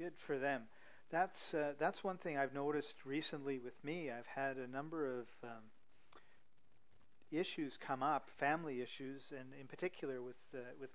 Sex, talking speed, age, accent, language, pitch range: male, 165 wpm, 40-59, American, English, 125-145 Hz